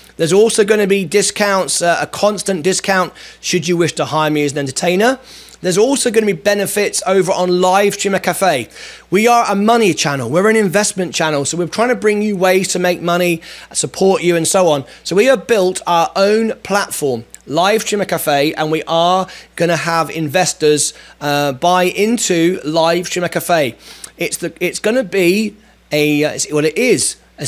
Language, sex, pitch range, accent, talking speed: English, male, 160-200 Hz, British, 190 wpm